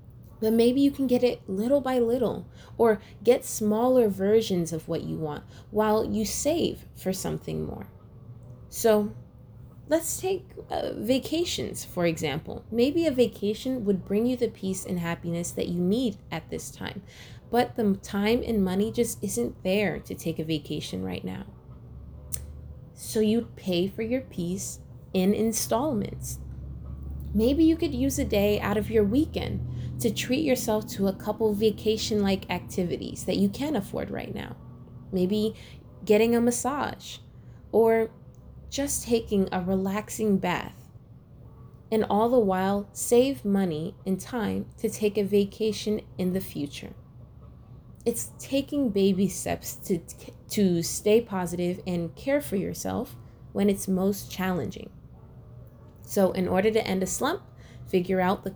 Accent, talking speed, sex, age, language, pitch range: American, 150 wpm, female, 20-39, English, 175-230 Hz